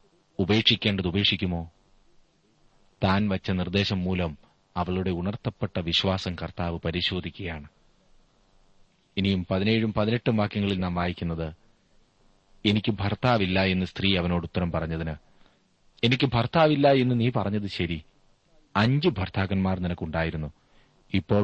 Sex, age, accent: male, 30-49, native